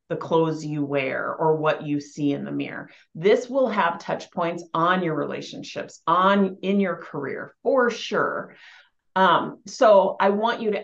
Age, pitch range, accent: 30-49, 165-215 Hz, American